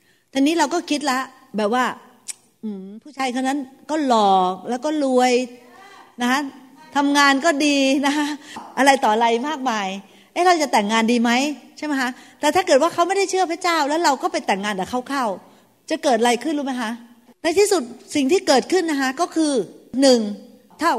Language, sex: Thai, female